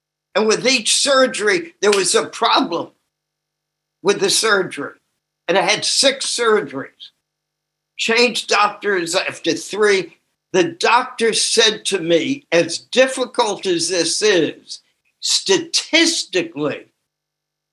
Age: 60-79